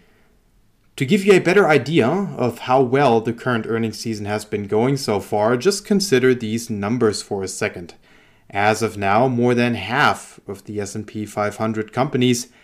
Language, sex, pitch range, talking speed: English, male, 110-140 Hz, 170 wpm